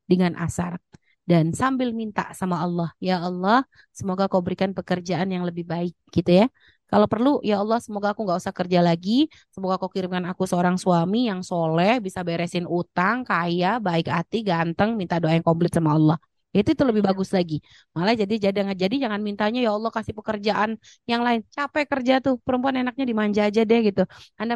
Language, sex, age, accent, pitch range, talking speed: Indonesian, female, 20-39, native, 185-225 Hz, 185 wpm